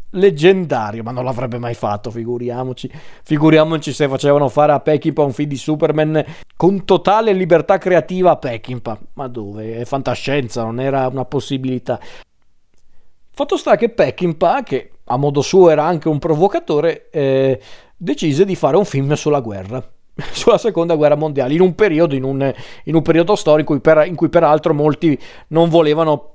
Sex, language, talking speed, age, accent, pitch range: male, Italian, 165 wpm, 40-59, native, 130-160 Hz